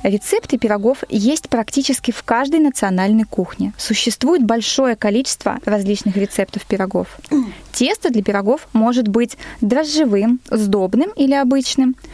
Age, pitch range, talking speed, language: 20-39, 210-275 Hz, 115 wpm, Russian